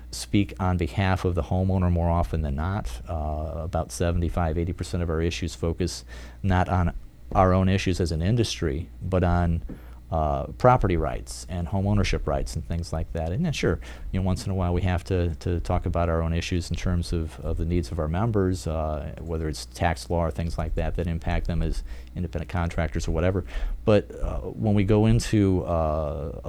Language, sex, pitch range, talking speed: English, male, 80-95 Hz, 200 wpm